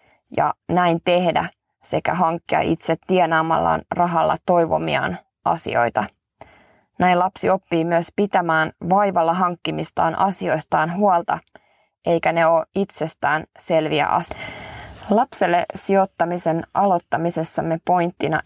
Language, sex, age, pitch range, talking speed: Finnish, female, 20-39, 165-185 Hz, 95 wpm